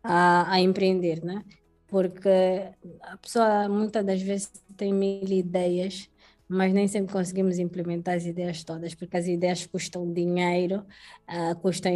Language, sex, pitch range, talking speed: Portuguese, female, 175-195 Hz, 140 wpm